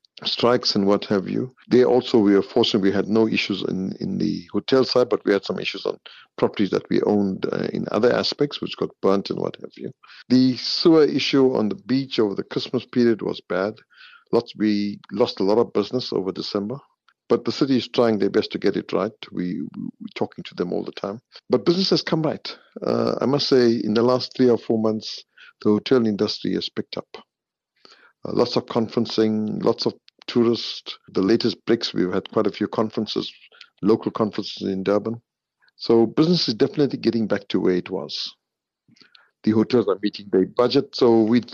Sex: male